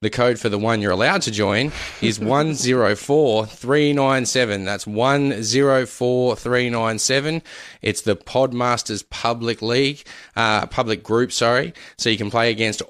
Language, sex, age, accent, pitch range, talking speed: English, male, 20-39, Australian, 105-120 Hz, 125 wpm